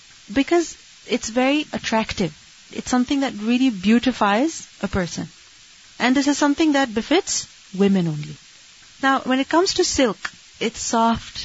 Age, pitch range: 30-49, 215-255 Hz